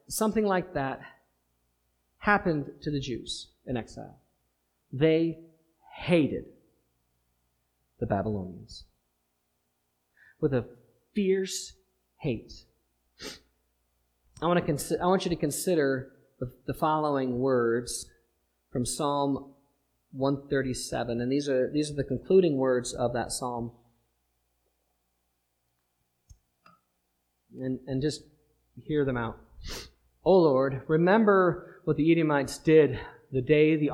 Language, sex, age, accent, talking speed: English, male, 40-59, American, 105 wpm